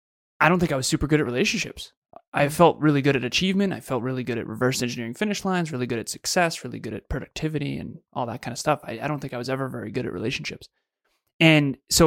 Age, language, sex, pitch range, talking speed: 20-39, English, male, 120-150 Hz, 255 wpm